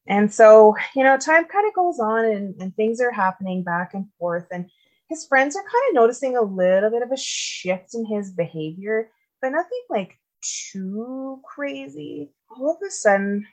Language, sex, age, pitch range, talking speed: English, female, 20-39, 185-250 Hz, 185 wpm